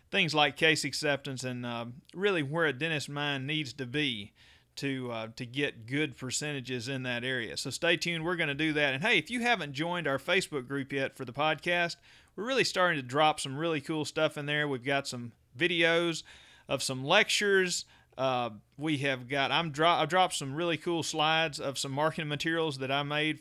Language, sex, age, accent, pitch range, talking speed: English, male, 40-59, American, 140-170 Hz, 195 wpm